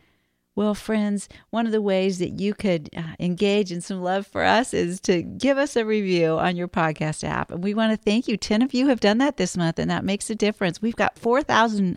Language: English